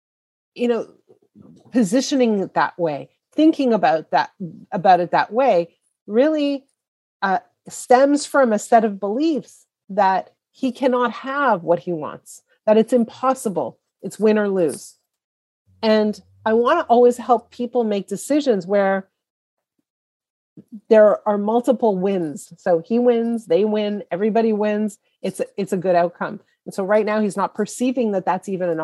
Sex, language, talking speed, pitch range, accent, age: female, English, 150 wpm, 200-250 Hz, American, 40-59